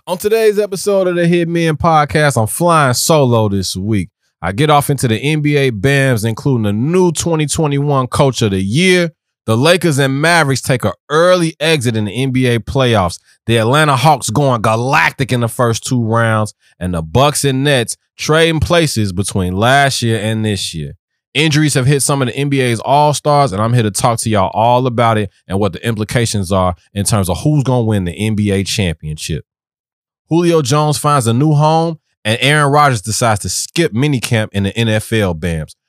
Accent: American